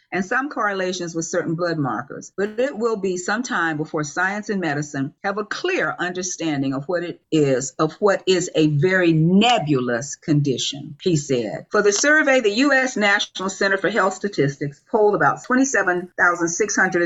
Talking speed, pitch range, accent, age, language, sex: 165 wpm, 150-205 Hz, American, 40-59, English, female